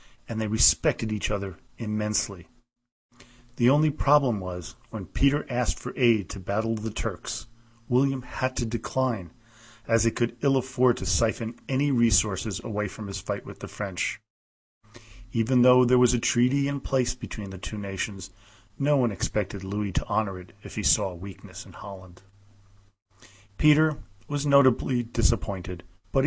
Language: English